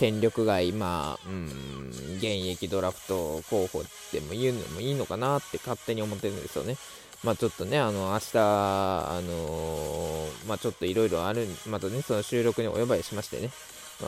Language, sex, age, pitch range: Japanese, male, 20-39, 100-145 Hz